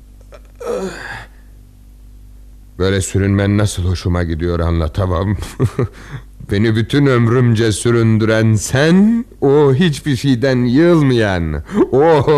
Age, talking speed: 60-79, 80 wpm